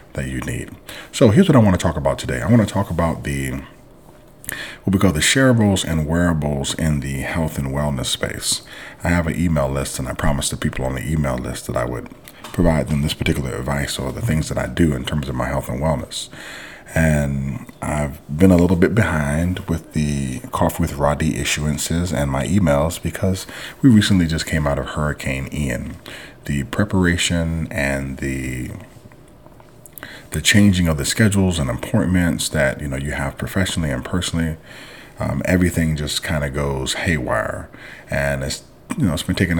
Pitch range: 70-85 Hz